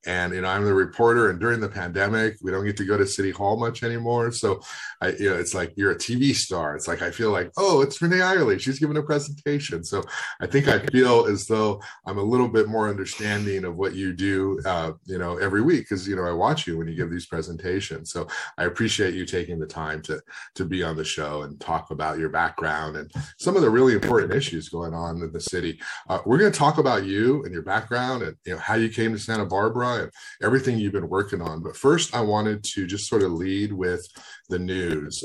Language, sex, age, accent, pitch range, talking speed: English, male, 30-49, American, 90-120 Hz, 240 wpm